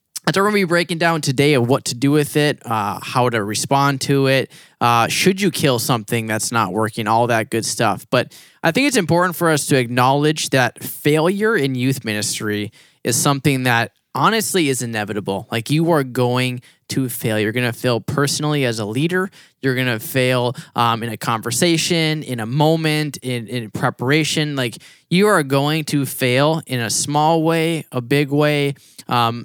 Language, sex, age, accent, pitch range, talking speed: English, male, 10-29, American, 120-150 Hz, 195 wpm